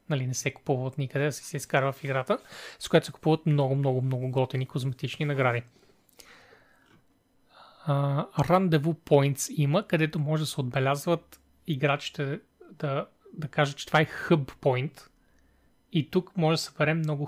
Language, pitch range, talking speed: Bulgarian, 140-160 Hz, 145 wpm